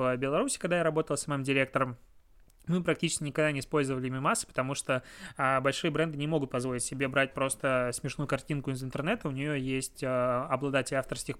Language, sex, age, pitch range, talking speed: Russian, male, 20-39, 135-155 Hz, 185 wpm